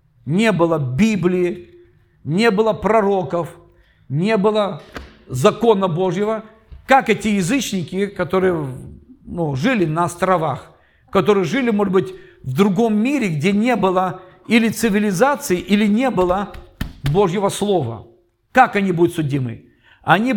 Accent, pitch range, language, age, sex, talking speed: native, 160-210 Hz, Russian, 50-69, male, 120 wpm